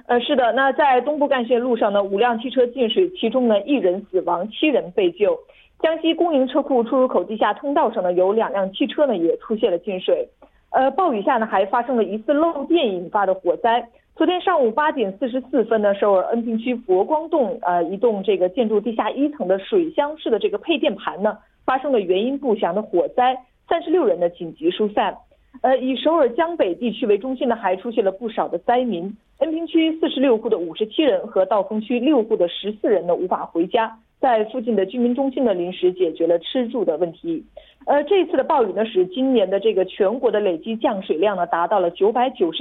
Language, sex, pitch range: Korean, female, 205-290 Hz